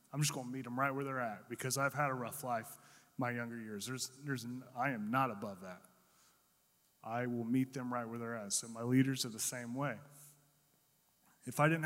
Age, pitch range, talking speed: 30-49, 125-150 Hz, 225 wpm